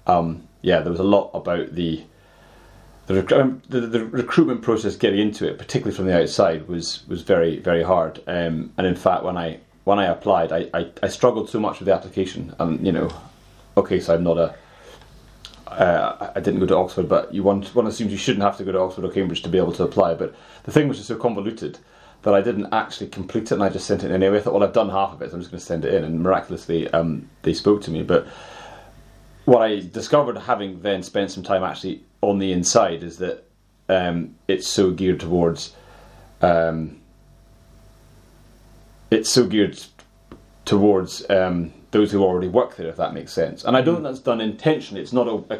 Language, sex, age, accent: English, male, 30-49, British